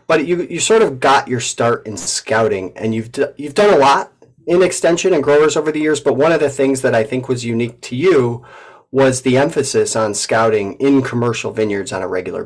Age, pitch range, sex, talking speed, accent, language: 30-49, 110-140 Hz, male, 225 wpm, American, English